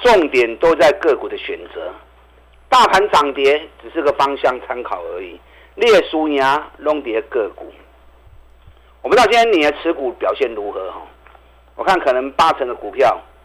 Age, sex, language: 50-69, male, Chinese